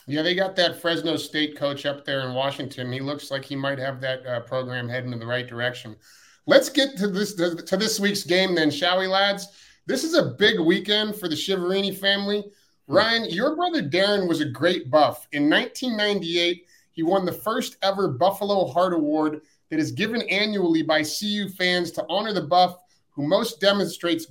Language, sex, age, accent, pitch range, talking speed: English, male, 30-49, American, 150-195 Hz, 195 wpm